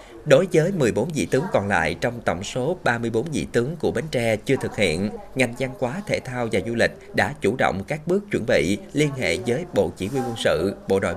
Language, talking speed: Vietnamese, 235 wpm